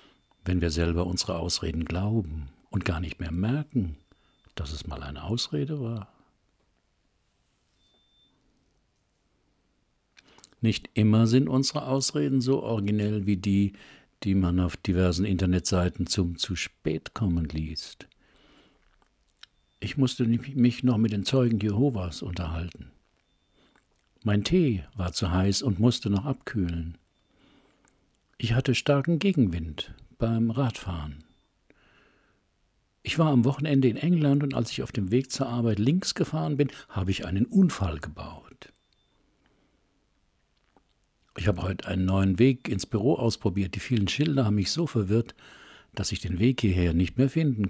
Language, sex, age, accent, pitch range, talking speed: German, male, 60-79, German, 90-130 Hz, 135 wpm